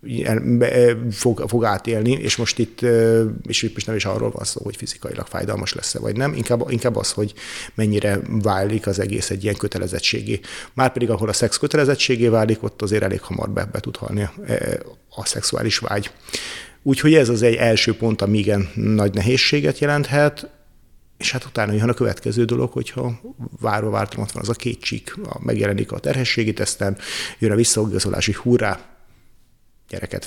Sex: male